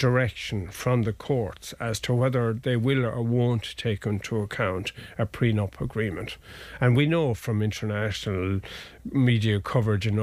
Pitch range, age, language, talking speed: 110-135 Hz, 50-69, English, 145 wpm